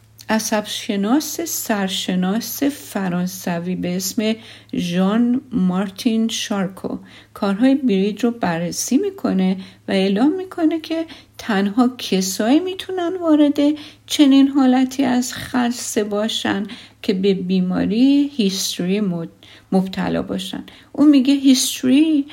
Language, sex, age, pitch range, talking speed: Persian, female, 50-69, 190-265 Hz, 95 wpm